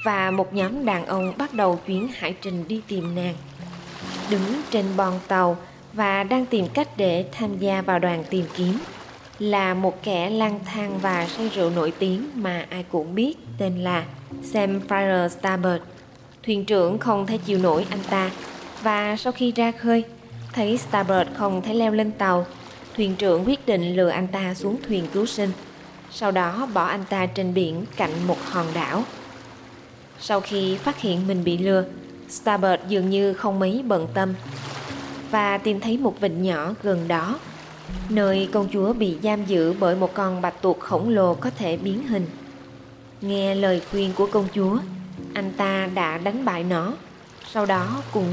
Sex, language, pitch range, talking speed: female, Vietnamese, 180-210 Hz, 180 wpm